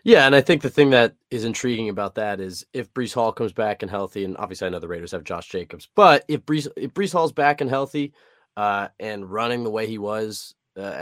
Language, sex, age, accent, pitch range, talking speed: English, male, 20-39, American, 100-135 Hz, 245 wpm